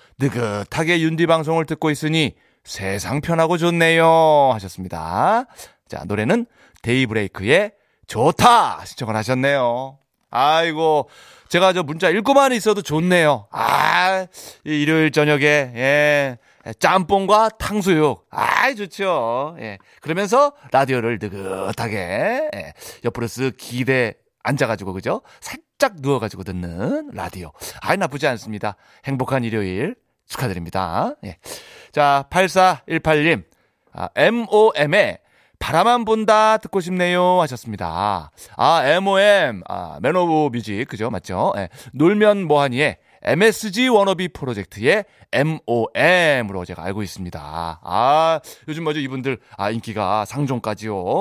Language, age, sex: Korean, 30-49, male